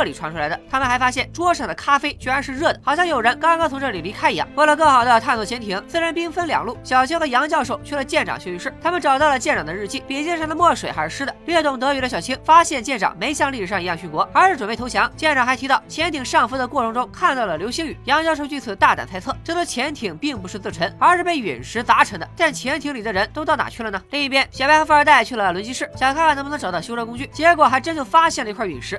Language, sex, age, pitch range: Chinese, female, 20-39, 250-315 Hz